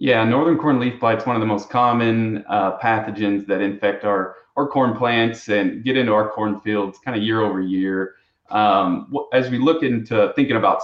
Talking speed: 205 wpm